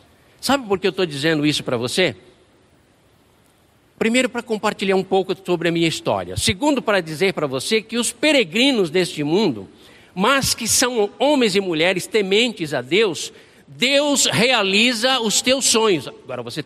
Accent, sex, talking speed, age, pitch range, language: Brazilian, male, 160 wpm, 60-79, 155-220 Hz, Portuguese